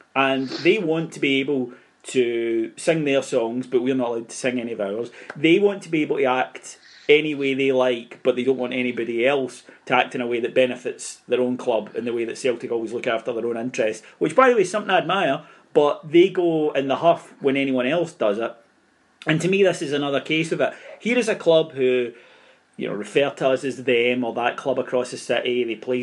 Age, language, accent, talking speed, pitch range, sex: 30-49, English, British, 240 wpm, 125-165 Hz, male